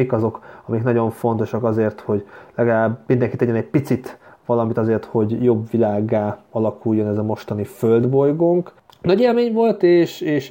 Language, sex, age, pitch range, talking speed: Hungarian, male, 30-49, 120-150 Hz, 150 wpm